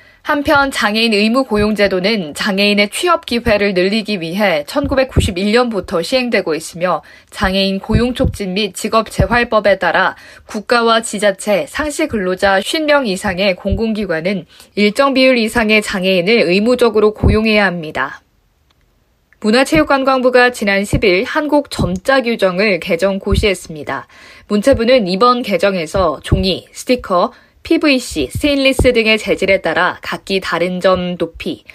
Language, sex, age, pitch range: Korean, female, 20-39, 185-240 Hz